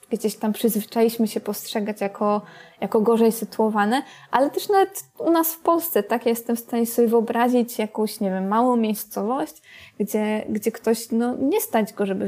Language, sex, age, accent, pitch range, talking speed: Polish, female, 20-39, native, 200-235 Hz, 175 wpm